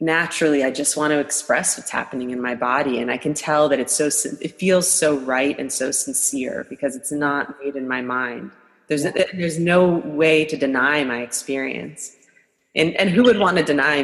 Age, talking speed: 20-39, 200 wpm